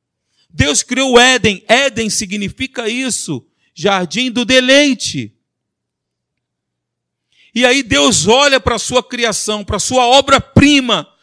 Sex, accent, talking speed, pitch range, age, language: male, Brazilian, 120 wpm, 195-255 Hz, 40-59, Portuguese